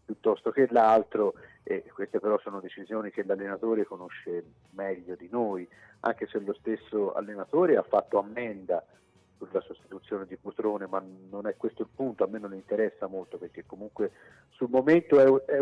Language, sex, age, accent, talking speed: Italian, male, 50-69, native, 160 wpm